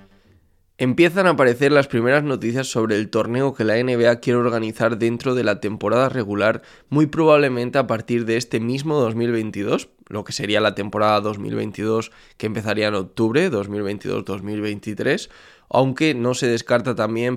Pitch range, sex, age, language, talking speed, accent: 105-130 Hz, male, 20-39, Spanish, 150 wpm, Spanish